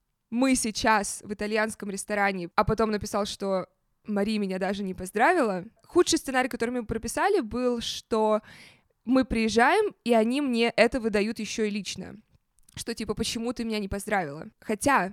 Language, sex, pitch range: Russian, female, 200-265 Hz